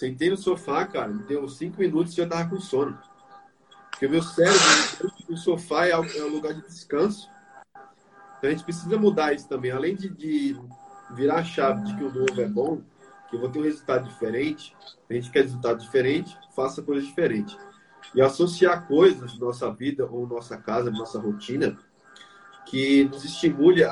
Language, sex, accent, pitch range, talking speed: Portuguese, male, Brazilian, 130-175 Hz, 180 wpm